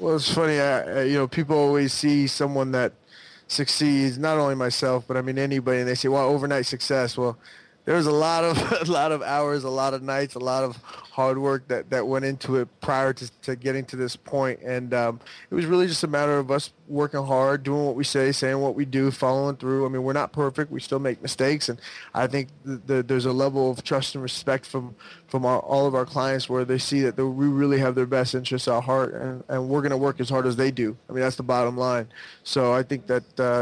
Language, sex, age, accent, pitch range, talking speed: English, male, 20-39, American, 125-140 Hz, 245 wpm